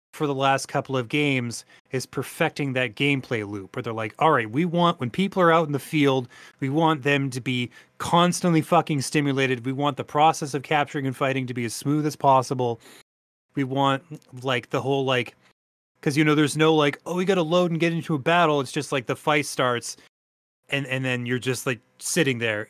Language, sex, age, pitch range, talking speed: English, male, 30-49, 120-150 Hz, 220 wpm